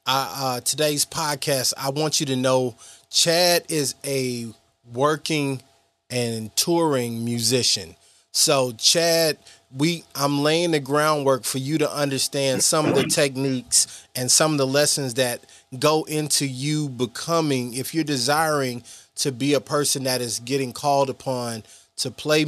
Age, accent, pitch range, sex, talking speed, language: 20-39, American, 120-145 Hz, male, 145 wpm, English